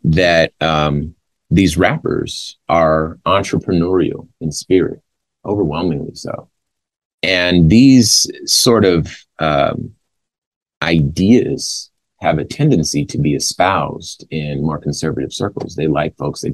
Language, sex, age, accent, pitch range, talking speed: English, male, 30-49, American, 75-95 Hz, 110 wpm